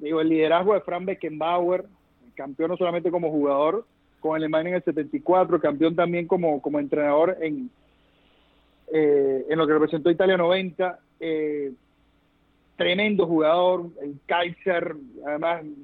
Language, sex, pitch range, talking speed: Spanish, male, 160-200 Hz, 135 wpm